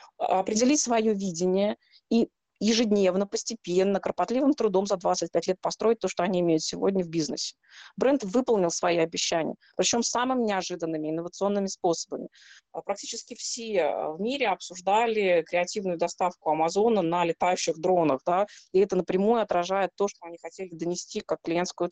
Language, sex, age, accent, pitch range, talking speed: Russian, female, 20-39, native, 175-220 Hz, 140 wpm